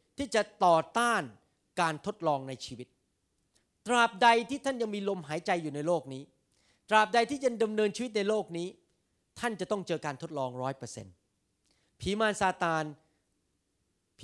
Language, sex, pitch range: Thai, male, 160-220 Hz